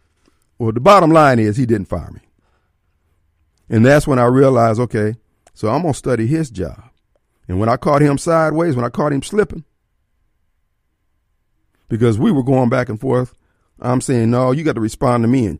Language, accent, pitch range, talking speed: English, American, 105-155 Hz, 190 wpm